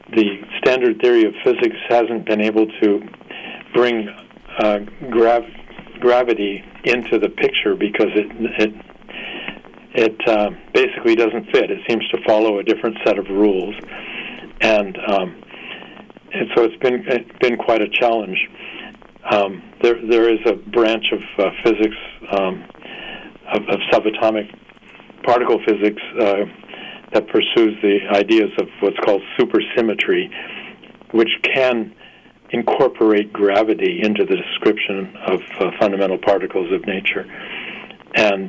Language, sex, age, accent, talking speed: English, male, 50-69, American, 130 wpm